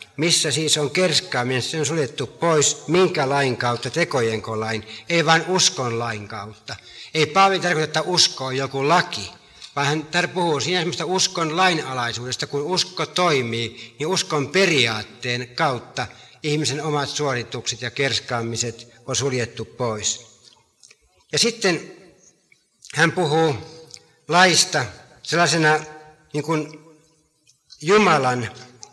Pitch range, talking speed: 120-165 Hz, 120 wpm